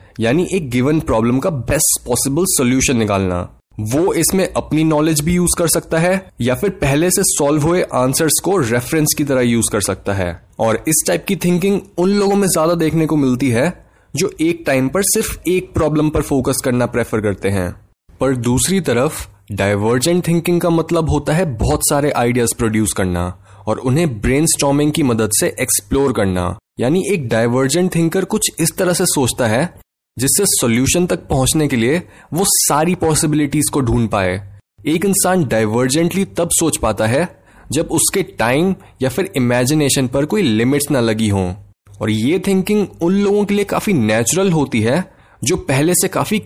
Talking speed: 175 wpm